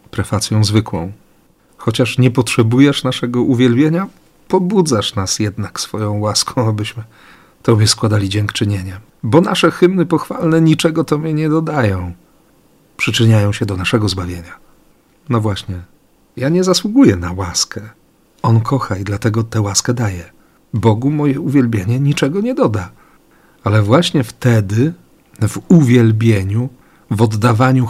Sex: male